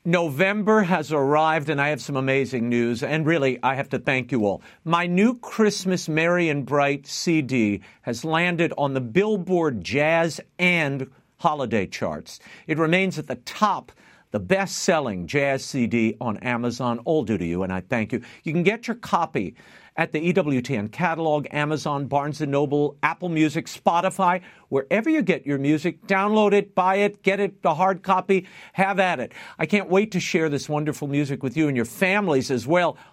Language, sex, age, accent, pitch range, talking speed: English, male, 50-69, American, 140-185 Hz, 180 wpm